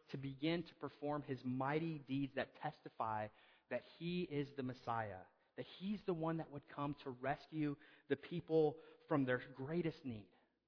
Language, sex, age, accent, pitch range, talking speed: English, male, 30-49, American, 125-155 Hz, 165 wpm